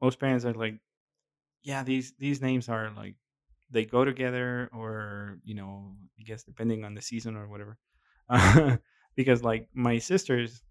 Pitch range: 100-120 Hz